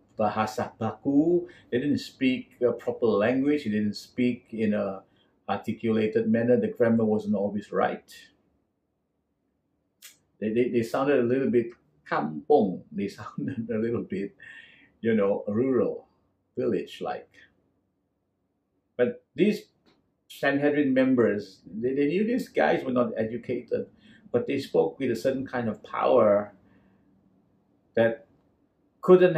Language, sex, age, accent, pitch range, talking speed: English, male, 50-69, Malaysian, 100-165 Hz, 125 wpm